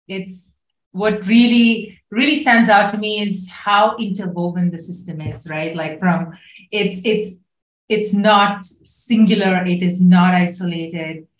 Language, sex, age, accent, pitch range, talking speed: English, female, 30-49, Indian, 170-220 Hz, 135 wpm